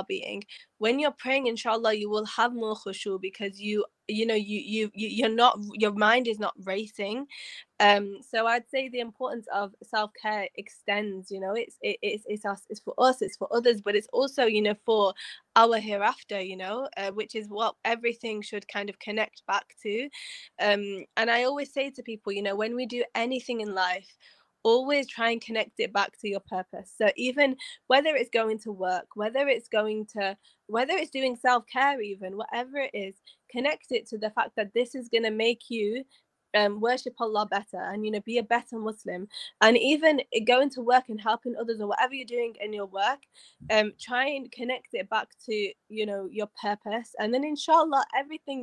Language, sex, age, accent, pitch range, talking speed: English, female, 10-29, British, 205-250 Hz, 200 wpm